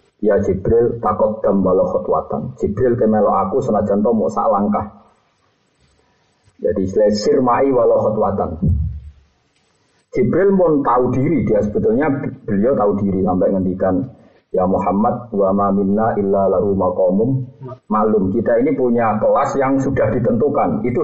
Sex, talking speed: male, 130 wpm